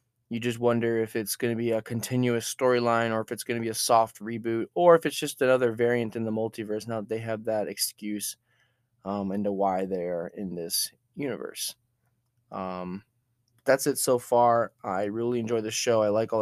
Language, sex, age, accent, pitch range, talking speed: English, male, 20-39, American, 105-120 Hz, 200 wpm